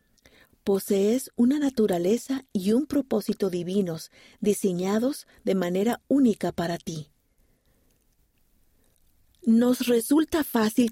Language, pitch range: Spanish, 180-240 Hz